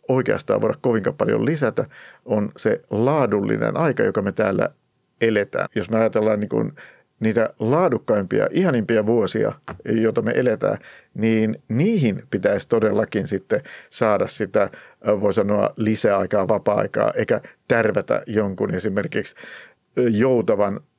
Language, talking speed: Finnish, 115 wpm